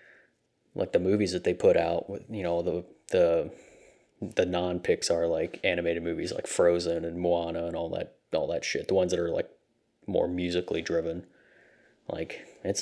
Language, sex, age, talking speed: English, male, 20-39, 185 wpm